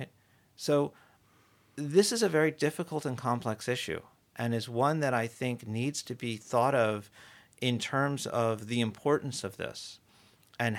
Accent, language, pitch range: American, English, 110-140 Hz